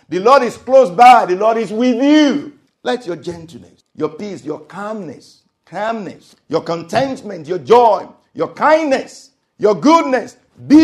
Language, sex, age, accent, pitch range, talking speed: English, male, 50-69, Nigerian, 155-245 Hz, 150 wpm